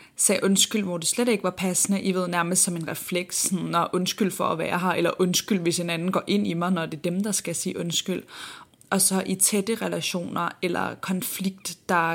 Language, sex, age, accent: Danish, female, 20-39, native